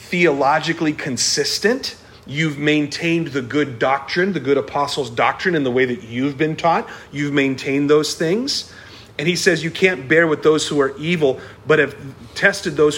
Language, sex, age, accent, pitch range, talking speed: English, male, 40-59, American, 125-160 Hz, 170 wpm